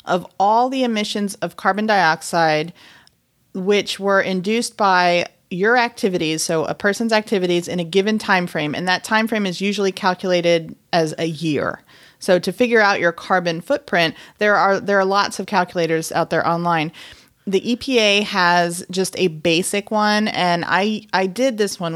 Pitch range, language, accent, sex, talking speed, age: 170-205 Hz, English, American, female, 170 wpm, 30-49